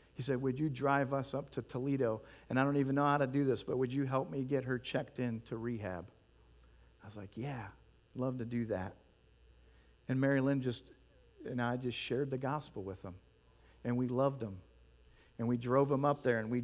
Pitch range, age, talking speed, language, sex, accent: 115-160 Hz, 50-69, 220 wpm, English, male, American